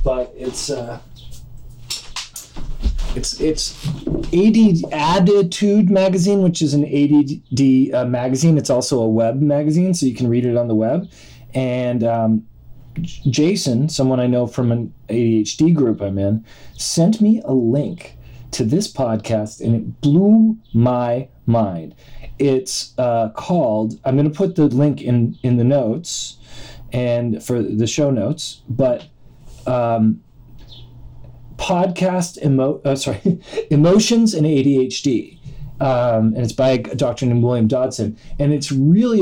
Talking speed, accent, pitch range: 135 wpm, American, 120-150 Hz